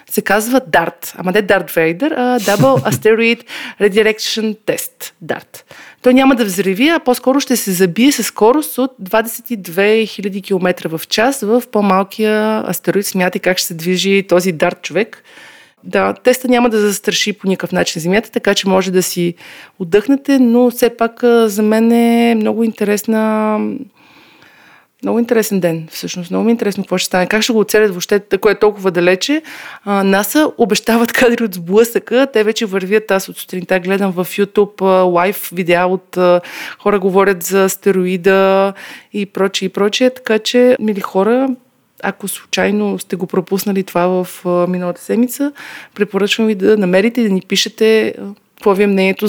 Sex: female